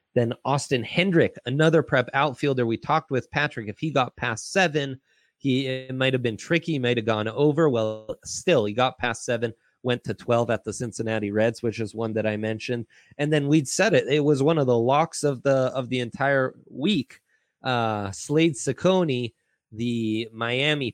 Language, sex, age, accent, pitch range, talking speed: English, male, 30-49, American, 110-135 Hz, 185 wpm